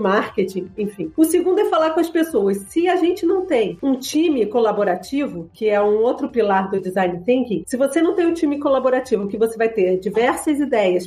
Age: 40-59